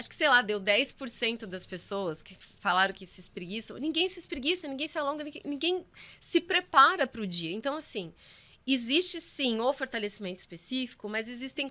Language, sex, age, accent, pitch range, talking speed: Portuguese, female, 20-39, Brazilian, 220-320 Hz, 175 wpm